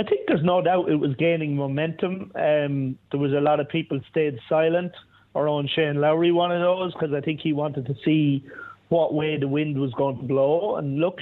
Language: English